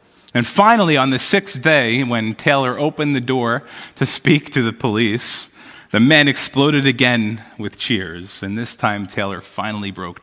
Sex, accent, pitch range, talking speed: male, American, 95-115 Hz, 165 wpm